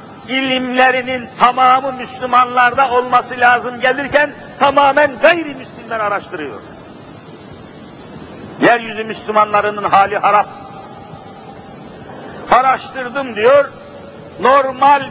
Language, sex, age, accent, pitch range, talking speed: Turkish, male, 60-79, native, 225-270 Hz, 70 wpm